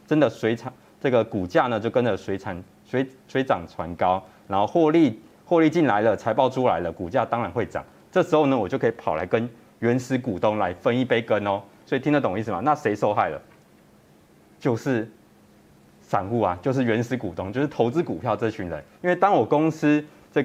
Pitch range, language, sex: 105-150 Hz, Chinese, male